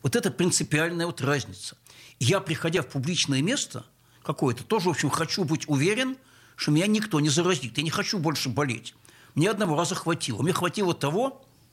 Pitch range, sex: 135-185 Hz, male